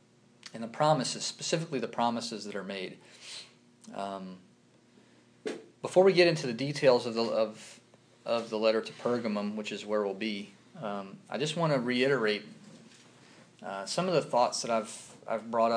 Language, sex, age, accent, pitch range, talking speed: English, male, 30-49, American, 110-150 Hz, 170 wpm